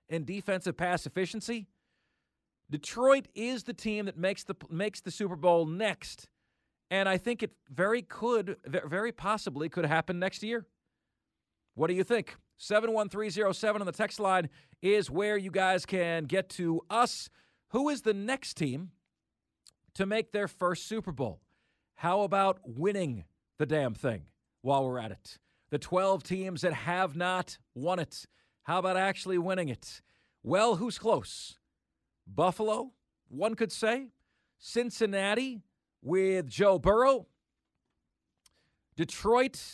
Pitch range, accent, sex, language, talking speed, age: 175-220 Hz, American, male, English, 135 wpm, 40-59